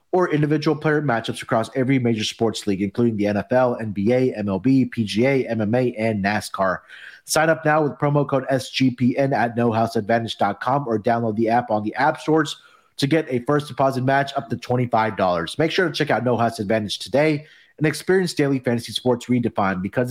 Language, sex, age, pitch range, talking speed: English, male, 30-49, 120-150 Hz, 180 wpm